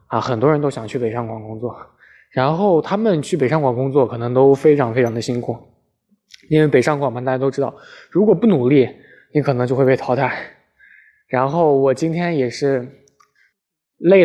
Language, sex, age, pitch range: Chinese, male, 20-39, 130-165 Hz